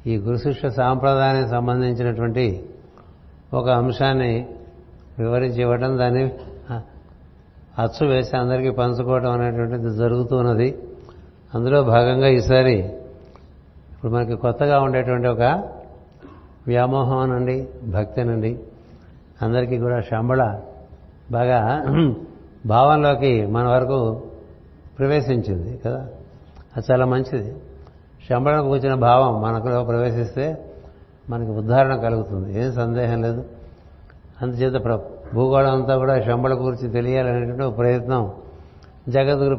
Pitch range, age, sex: 110-130 Hz, 60-79, male